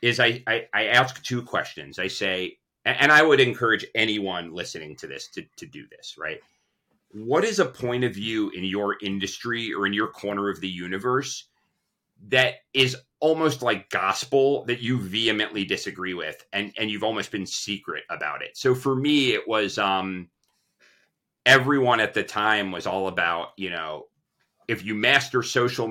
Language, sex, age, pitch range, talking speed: English, male, 30-49, 100-130 Hz, 175 wpm